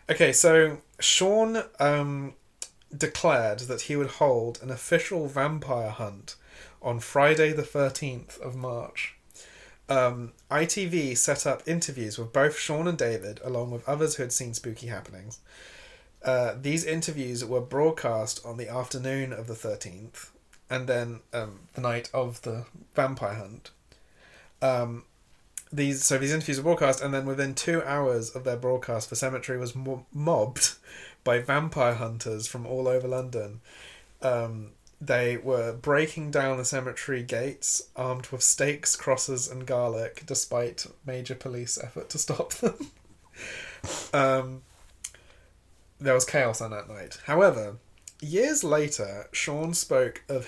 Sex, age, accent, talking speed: male, 30-49, British, 140 wpm